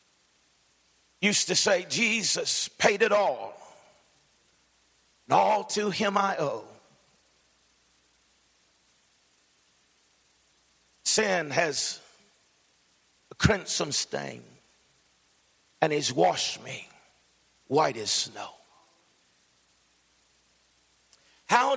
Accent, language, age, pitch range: American, English, 50-69, 140-215 Hz